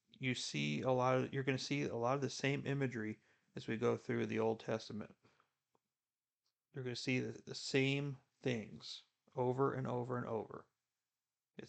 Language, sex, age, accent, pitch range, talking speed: English, male, 40-59, American, 115-140 Hz, 180 wpm